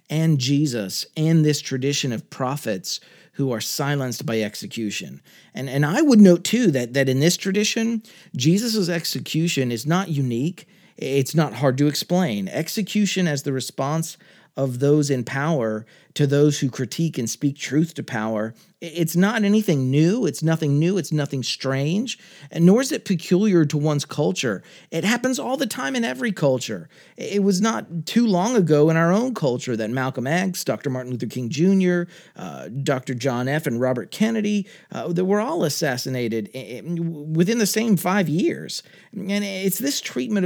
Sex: male